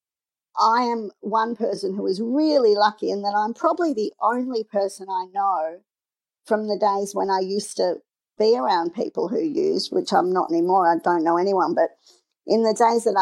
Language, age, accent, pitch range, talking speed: English, 40-59, Australian, 190-230 Hz, 190 wpm